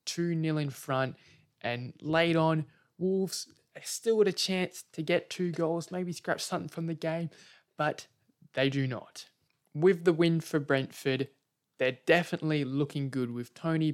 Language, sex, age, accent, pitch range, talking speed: English, male, 20-39, Australian, 130-165 Hz, 155 wpm